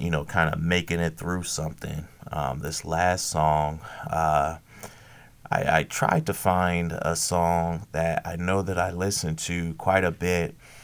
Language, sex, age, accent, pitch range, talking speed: English, male, 30-49, American, 80-90 Hz, 165 wpm